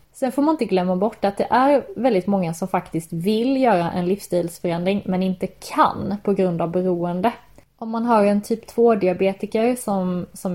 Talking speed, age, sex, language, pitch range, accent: 180 wpm, 20-39, female, English, 180-210 Hz, Swedish